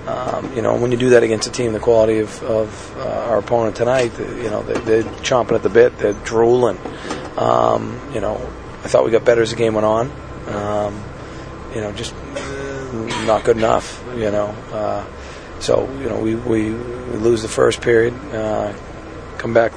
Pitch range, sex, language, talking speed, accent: 105-120 Hz, male, English, 190 wpm, American